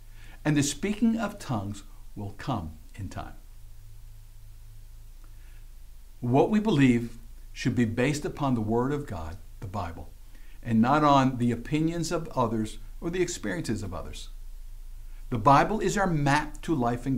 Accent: American